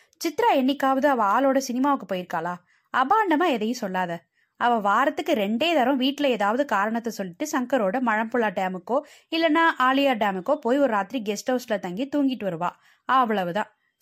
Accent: native